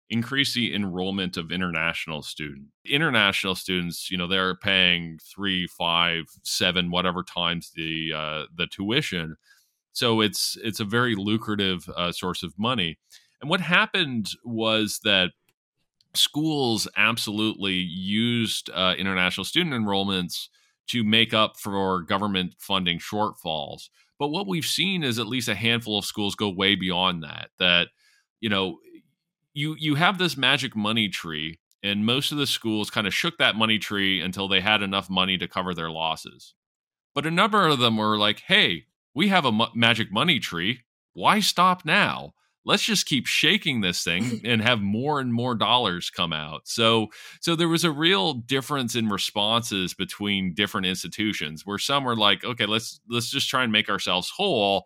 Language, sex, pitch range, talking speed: English, male, 95-120 Hz, 165 wpm